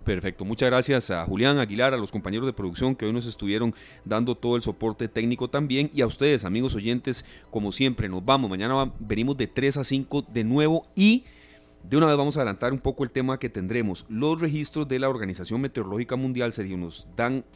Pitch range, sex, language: 95-130 Hz, male, Spanish